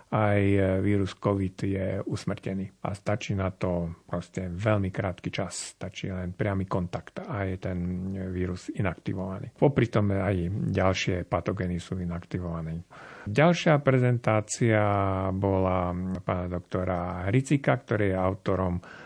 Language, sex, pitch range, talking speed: Slovak, male, 90-105 Hz, 115 wpm